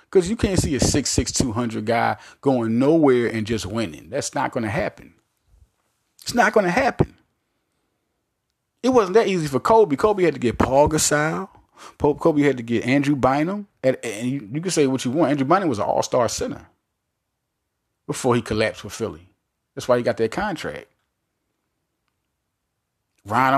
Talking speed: 180 wpm